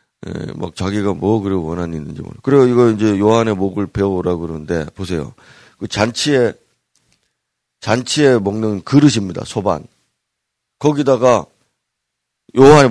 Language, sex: Korean, male